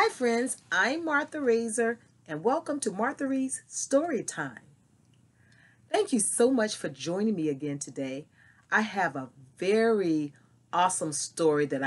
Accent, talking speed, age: American, 135 wpm, 40-59